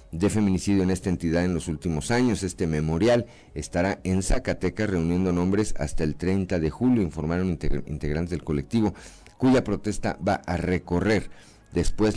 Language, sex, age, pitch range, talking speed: Spanish, male, 50-69, 80-100 Hz, 155 wpm